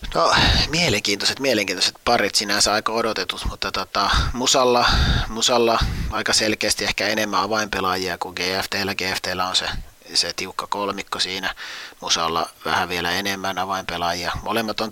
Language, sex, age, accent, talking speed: Finnish, male, 30-49, native, 130 wpm